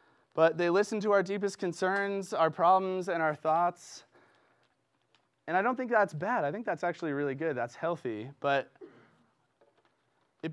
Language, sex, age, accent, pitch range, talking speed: English, male, 20-39, American, 145-175 Hz, 160 wpm